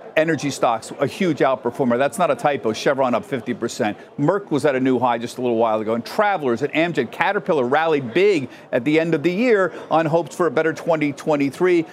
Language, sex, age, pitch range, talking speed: English, male, 50-69, 135-180 Hz, 215 wpm